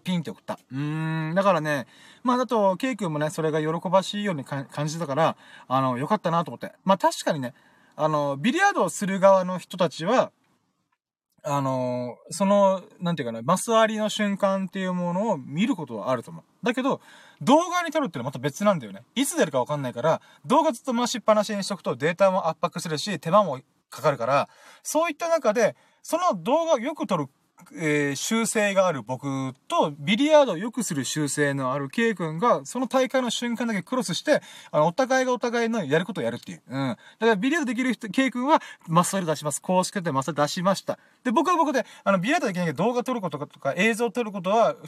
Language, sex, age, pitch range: Japanese, male, 20-39, 150-235 Hz